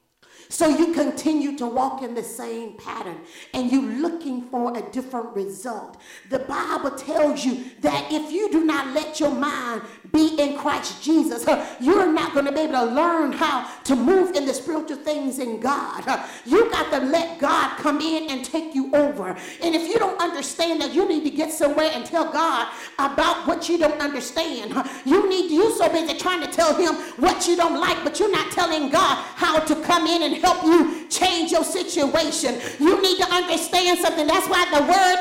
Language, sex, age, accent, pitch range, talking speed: English, female, 50-69, American, 300-360 Hz, 200 wpm